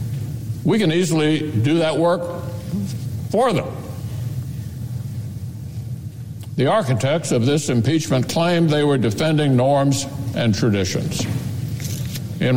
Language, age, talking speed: English, 60-79, 100 wpm